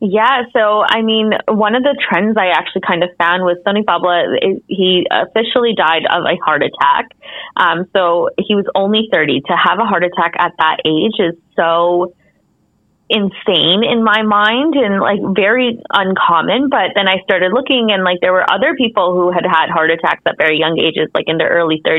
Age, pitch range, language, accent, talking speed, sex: 20-39, 170-215 Hz, English, American, 195 wpm, female